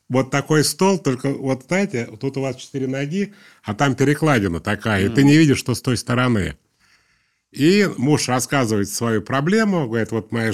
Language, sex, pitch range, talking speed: Russian, male, 110-140 Hz, 175 wpm